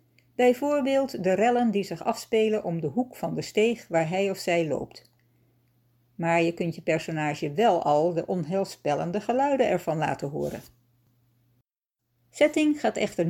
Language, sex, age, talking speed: Dutch, female, 60-79, 150 wpm